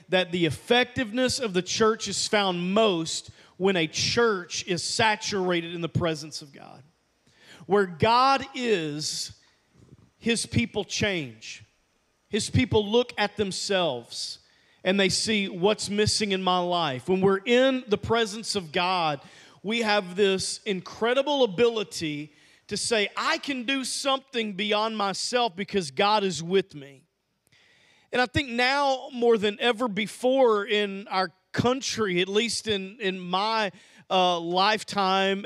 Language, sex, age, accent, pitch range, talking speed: English, male, 40-59, American, 175-225 Hz, 135 wpm